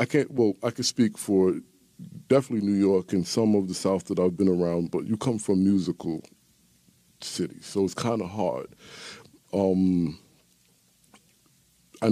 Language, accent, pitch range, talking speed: English, American, 90-110 Hz, 160 wpm